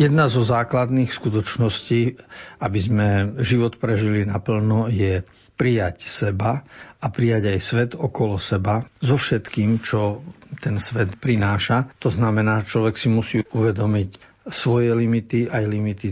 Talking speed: 125 wpm